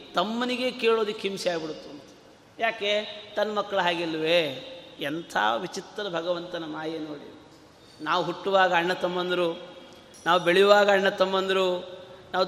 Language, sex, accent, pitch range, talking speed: Kannada, male, native, 180-220 Hz, 105 wpm